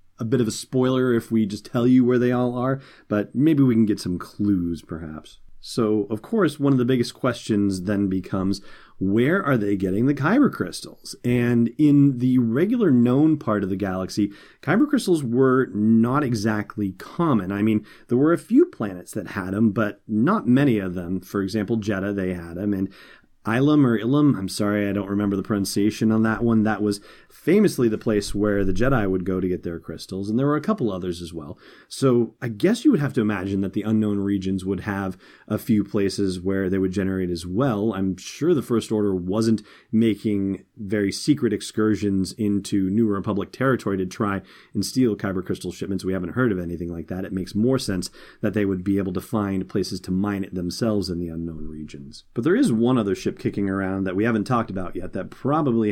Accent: American